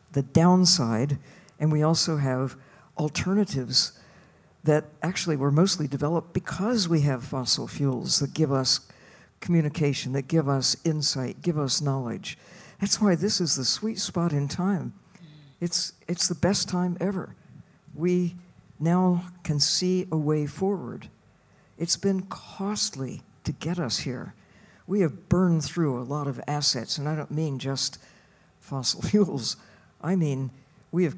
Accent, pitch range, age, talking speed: American, 135-175 Hz, 60-79, 145 wpm